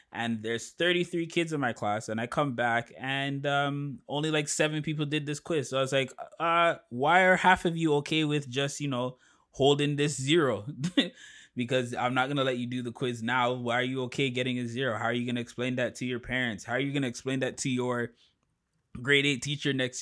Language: English